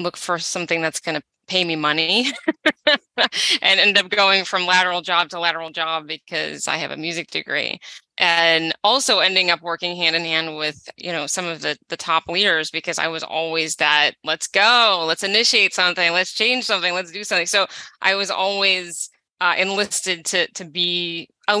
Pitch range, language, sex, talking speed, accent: 160-195 Hz, English, female, 190 wpm, American